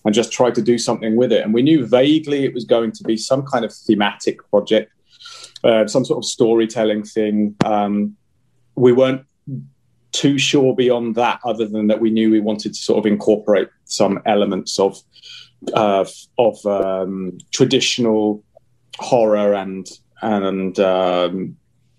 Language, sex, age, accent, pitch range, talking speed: English, male, 30-49, British, 105-125 Hz, 155 wpm